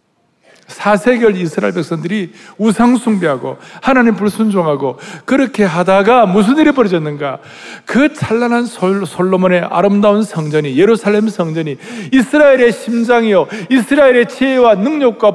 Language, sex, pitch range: Korean, male, 155-245 Hz